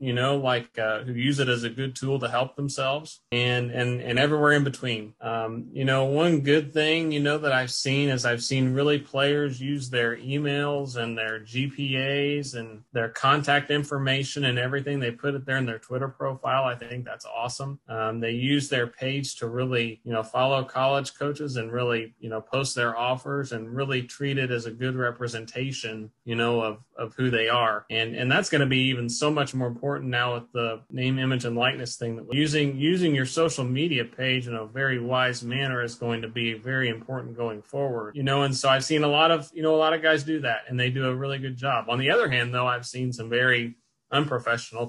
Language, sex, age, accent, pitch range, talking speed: English, male, 30-49, American, 120-140 Hz, 225 wpm